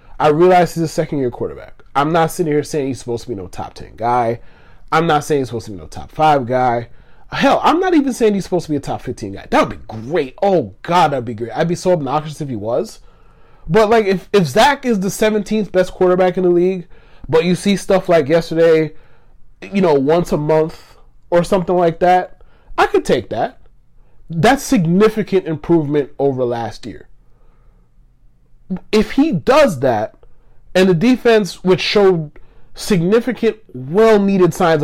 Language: English